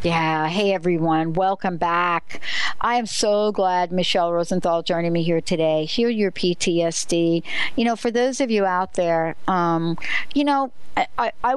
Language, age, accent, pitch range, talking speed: English, 60-79, American, 170-205 Hz, 155 wpm